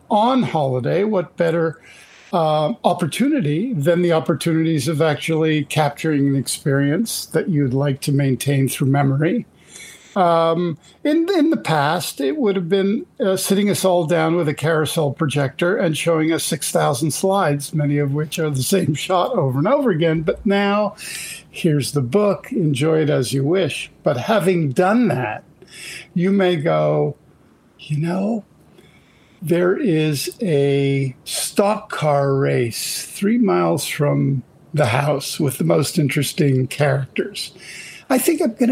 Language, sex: English, male